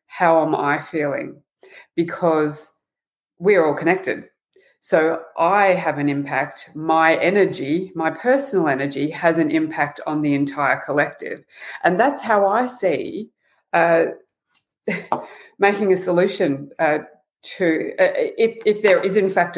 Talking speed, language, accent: 130 wpm, English, Australian